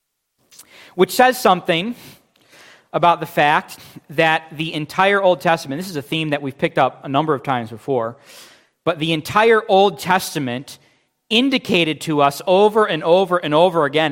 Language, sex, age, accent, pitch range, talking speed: English, male, 40-59, American, 140-170 Hz, 160 wpm